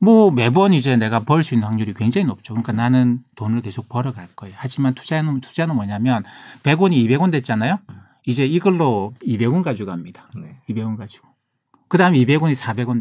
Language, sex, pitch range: Korean, male, 115-155 Hz